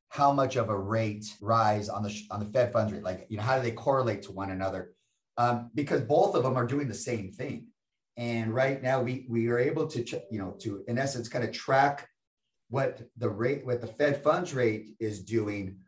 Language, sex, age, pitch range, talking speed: English, male, 30-49, 105-130 Hz, 225 wpm